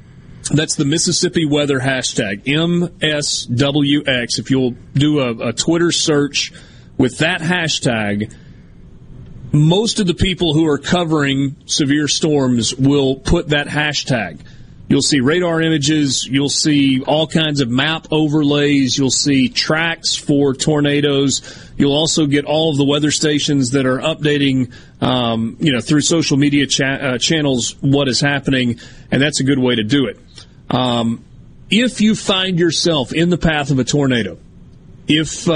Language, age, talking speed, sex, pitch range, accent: English, 30-49, 150 wpm, male, 130-155 Hz, American